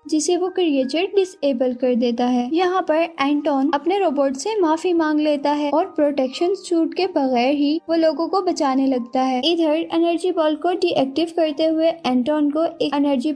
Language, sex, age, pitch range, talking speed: Hindi, female, 10-29, 280-340 Hz, 185 wpm